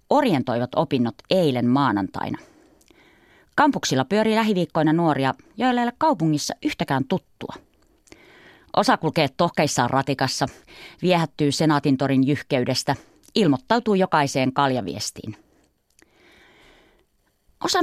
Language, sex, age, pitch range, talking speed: Finnish, female, 30-49, 135-205 Hz, 85 wpm